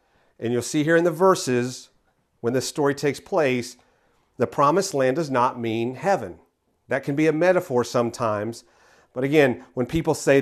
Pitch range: 125-160 Hz